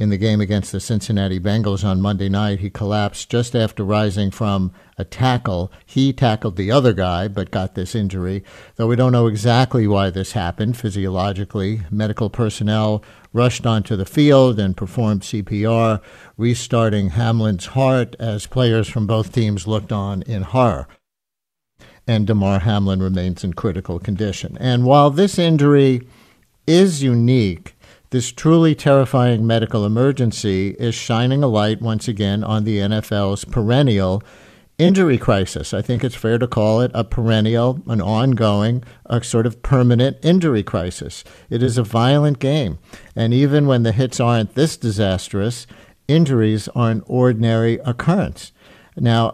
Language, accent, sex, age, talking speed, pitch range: English, American, male, 60-79, 150 wpm, 105-125 Hz